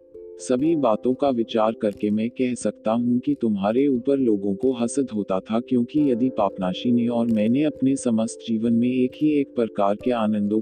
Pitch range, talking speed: 100-130 Hz, 135 wpm